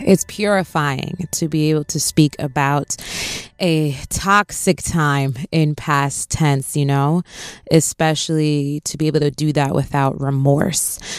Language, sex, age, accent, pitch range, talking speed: English, female, 20-39, American, 145-170 Hz, 135 wpm